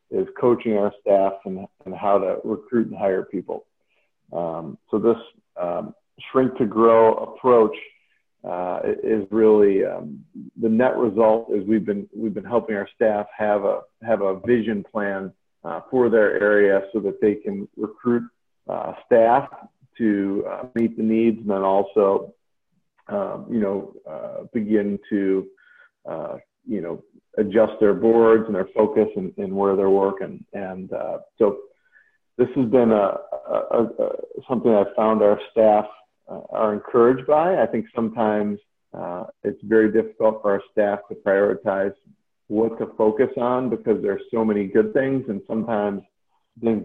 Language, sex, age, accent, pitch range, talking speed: English, male, 50-69, American, 105-130 Hz, 160 wpm